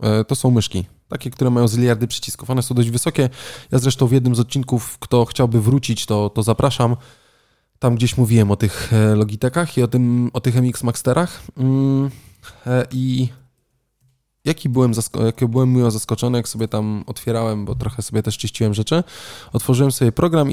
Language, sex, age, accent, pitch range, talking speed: Polish, male, 20-39, native, 115-130 Hz, 170 wpm